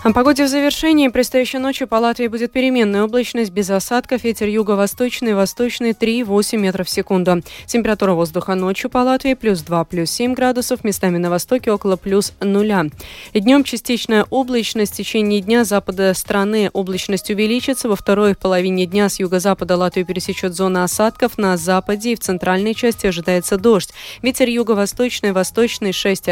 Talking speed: 155 wpm